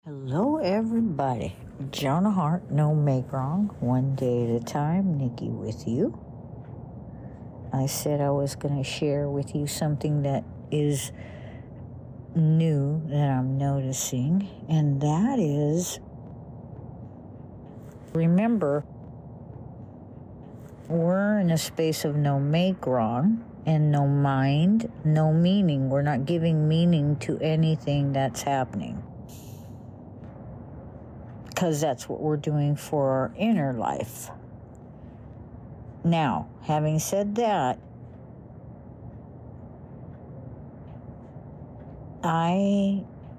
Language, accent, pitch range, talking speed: English, American, 125-160 Hz, 95 wpm